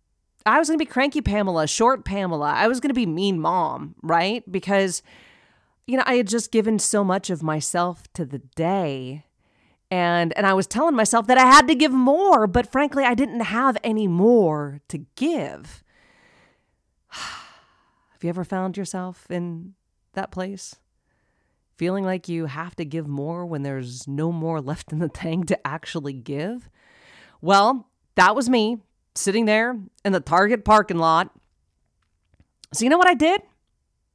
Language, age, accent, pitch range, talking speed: English, 30-49, American, 160-235 Hz, 165 wpm